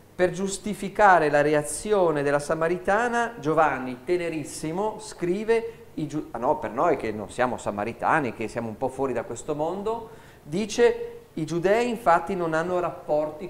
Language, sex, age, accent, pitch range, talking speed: Italian, male, 40-59, native, 135-180 Hz, 140 wpm